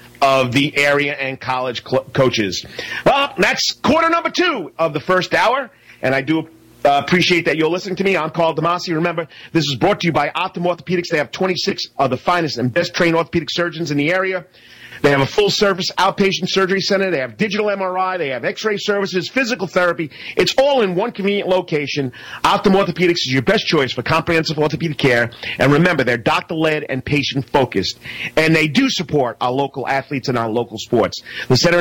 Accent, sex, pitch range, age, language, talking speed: American, male, 140-185 Hz, 40-59, English, 190 wpm